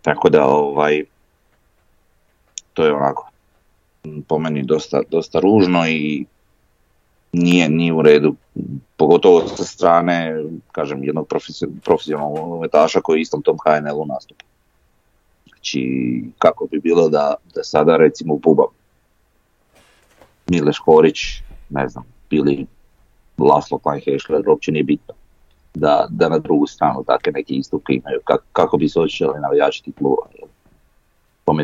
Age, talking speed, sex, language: 30-49, 120 wpm, male, Croatian